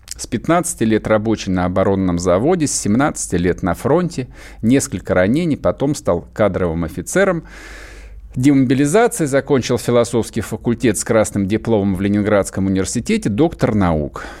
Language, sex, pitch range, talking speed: Russian, male, 100-155 Hz, 125 wpm